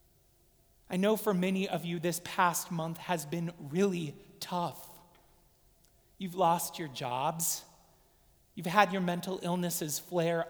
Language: English